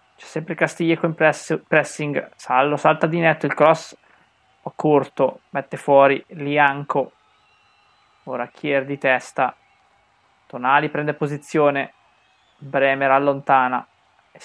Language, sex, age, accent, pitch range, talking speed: Italian, male, 20-39, native, 140-165 Hz, 115 wpm